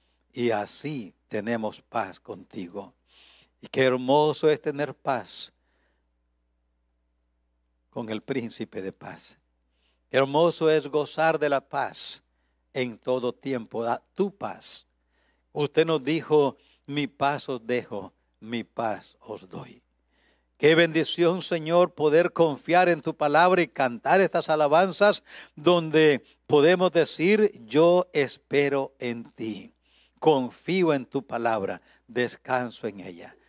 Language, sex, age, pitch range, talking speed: English, male, 60-79, 105-150 Hz, 120 wpm